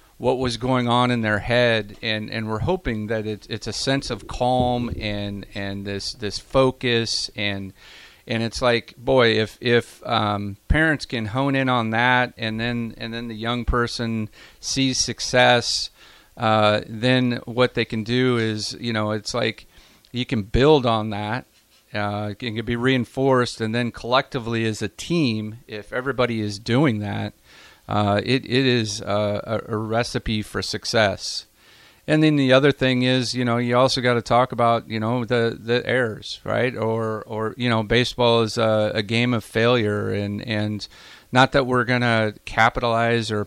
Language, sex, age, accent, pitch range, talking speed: English, male, 40-59, American, 110-125 Hz, 175 wpm